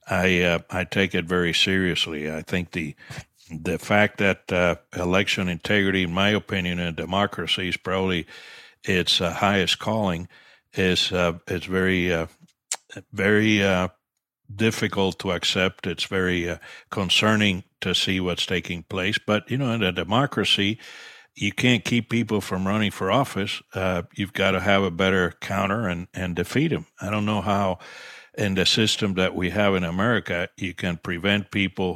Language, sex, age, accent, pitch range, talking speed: English, male, 60-79, American, 90-105 Hz, 165 wpm